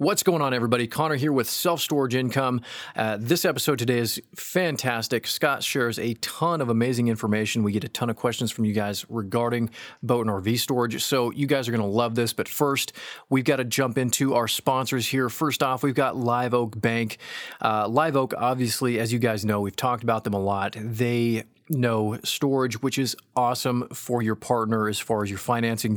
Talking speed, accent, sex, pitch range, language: 210 wpm, American, male, 115-135 Hz, English